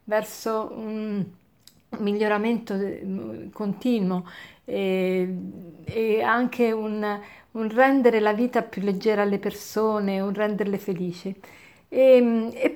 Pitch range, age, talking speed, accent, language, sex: 195-230 Hz, 50-69, 100 wpm, native, Italian, female